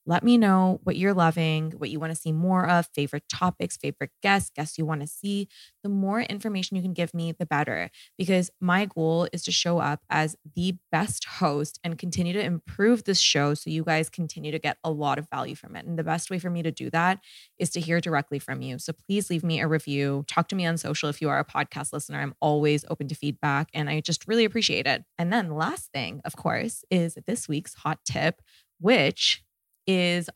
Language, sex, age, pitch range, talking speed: English, female, 20-39, 150-180 Hz, 230 wpm